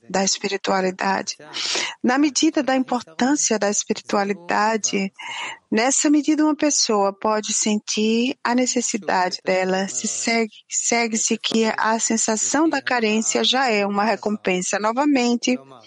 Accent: Brazilian